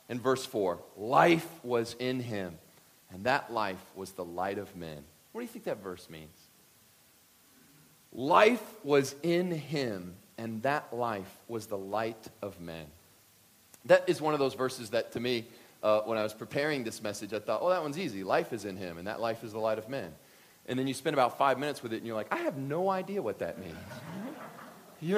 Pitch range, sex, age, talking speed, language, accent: 100-165 Hz, male, 40-59, 210 wpm, English, American